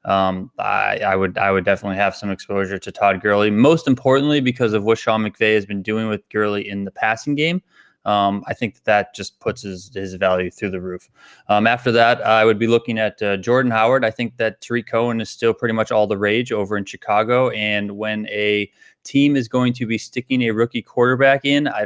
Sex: male